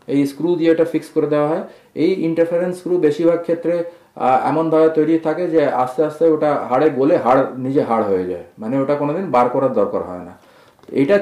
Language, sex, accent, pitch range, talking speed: Bengali, male, native, 130-165 Hz, 195 wpm